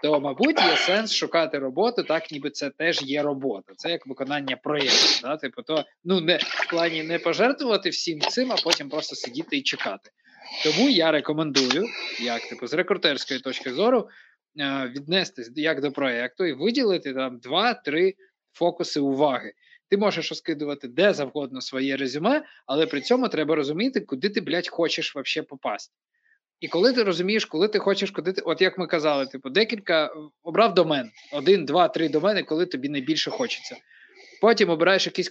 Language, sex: Ukrainian, male